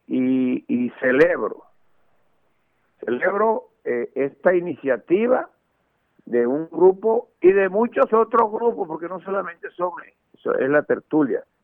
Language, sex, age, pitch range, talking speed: English, male, 60-79, 160-230 Hz, 120 wpm